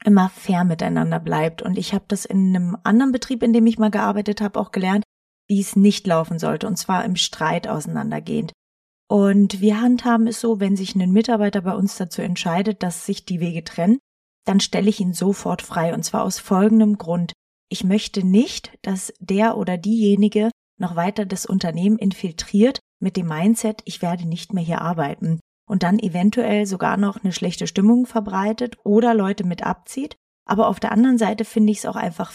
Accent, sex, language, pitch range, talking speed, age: German, female, German, 185-225 Hz, 190 wpm, 30-49